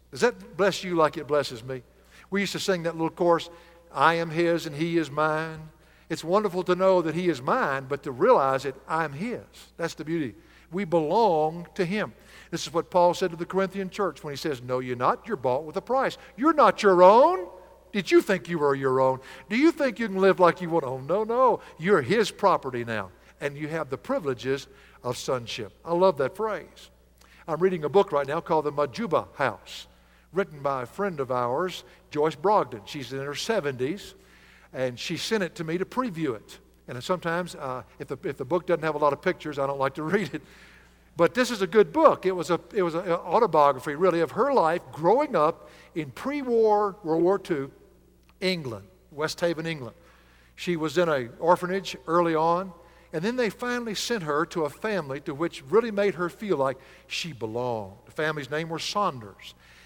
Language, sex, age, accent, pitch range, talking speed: English, male, 60-79, American, 140-185 Hz, 210 wpm